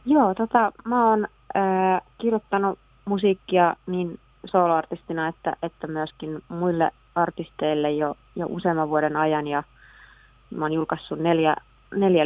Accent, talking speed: native, 120 wpm